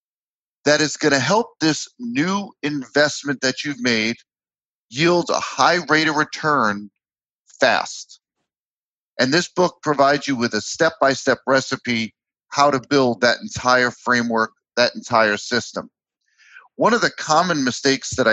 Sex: male